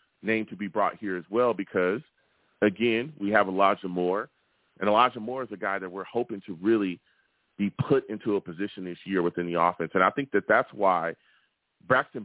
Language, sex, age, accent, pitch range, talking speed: English, male, 40-59, American, 95-120 Hz, 200 wpm